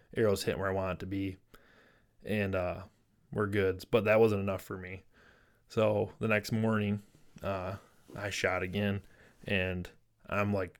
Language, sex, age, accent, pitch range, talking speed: English, male, 20-39, American, 95-110 Hz, 160 wpm